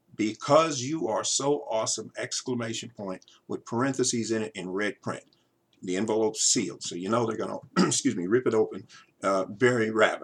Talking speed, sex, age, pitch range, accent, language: 180 wpm, male, 50-69, 120-185 Hz, American, English